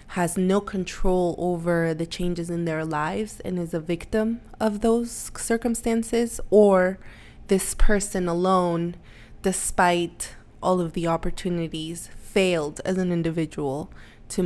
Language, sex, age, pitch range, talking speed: English, female, 20-39, 165-190 Hz, 125 wpm